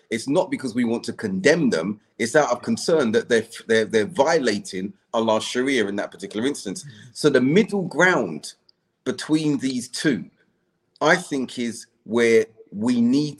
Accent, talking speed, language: British, 160 wpm, English